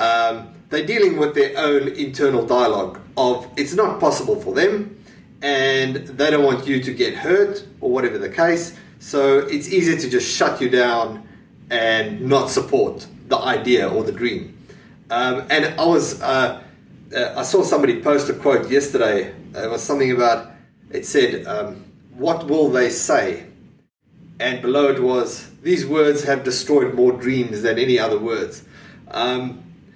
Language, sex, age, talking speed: English, male, 30-49, 160 wpm